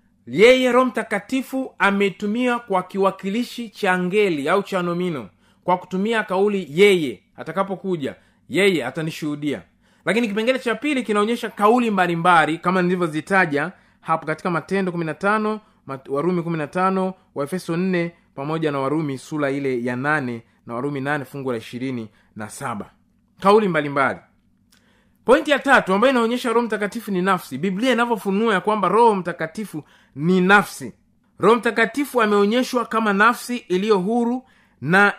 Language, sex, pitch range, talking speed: Swahili, male, 170-225 Hz, 130 wpm